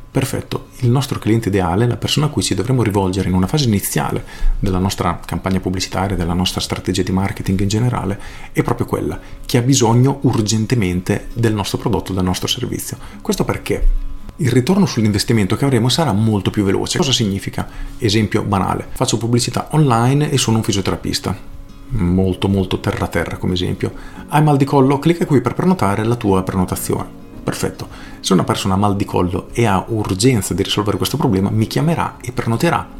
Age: 40-59